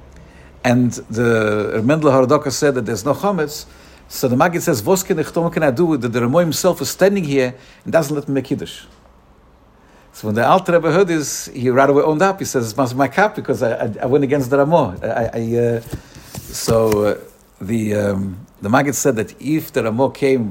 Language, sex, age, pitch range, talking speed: English, male, 50-69, 115-150 Hz, 210 wpm